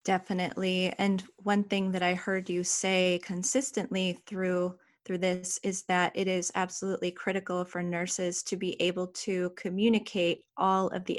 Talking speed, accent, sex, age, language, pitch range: 155 wpm, American, female, 30-49, English, 180-205 Hz